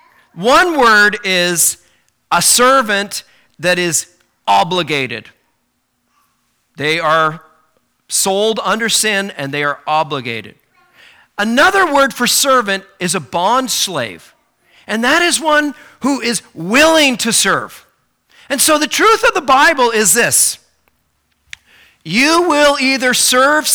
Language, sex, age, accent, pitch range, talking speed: English, male, 40-59, American, 190-280 Hz, 120 wpm